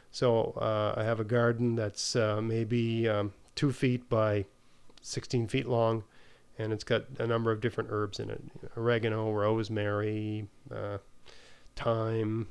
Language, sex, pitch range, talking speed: English, male, 110-130 Hz, 145 wpm